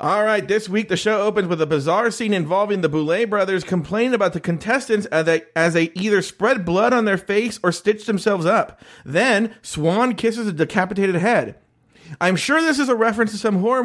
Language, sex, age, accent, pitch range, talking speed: English, male, 40-59, American, 170-225 Hz, 205 wpm